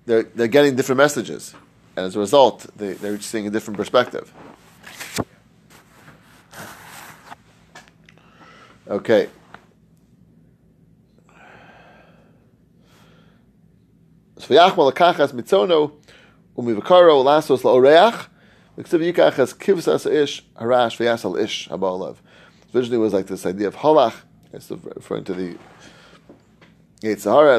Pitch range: 105-145 Hz